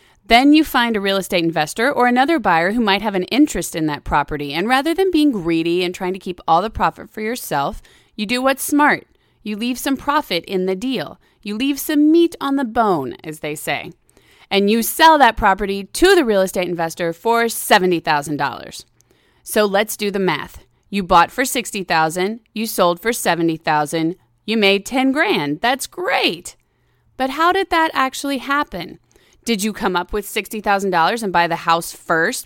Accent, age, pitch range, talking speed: American, 30-49, 175-265 Hz, 185 wpm